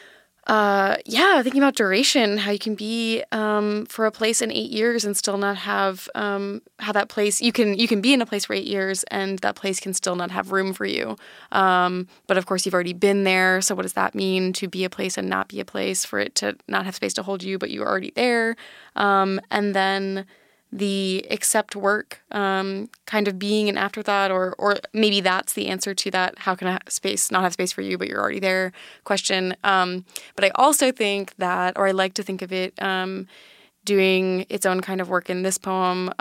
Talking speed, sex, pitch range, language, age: 225 wpm, female, 185-210 Hz, English, 20-39